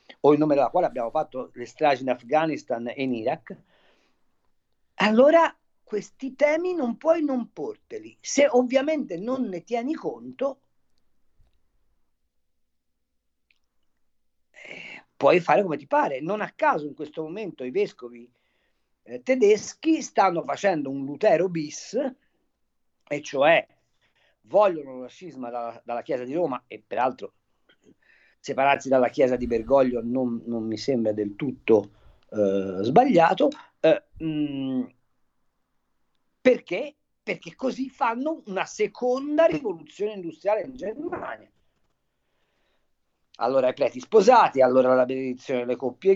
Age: 50-69